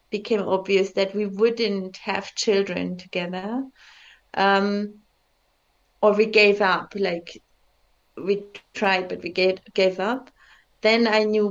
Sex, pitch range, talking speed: female, 190-225 Hz, 120 wpm